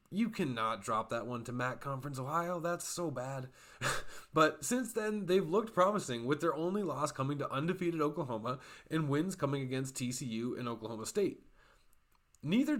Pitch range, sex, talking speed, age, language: 125-165 Hz, male, 165 wpm, 20-39, English